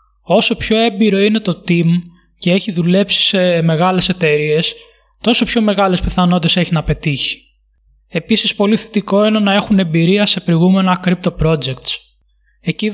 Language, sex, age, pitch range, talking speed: Greek, male, 20-39, 175-210 Hz, 145 wpm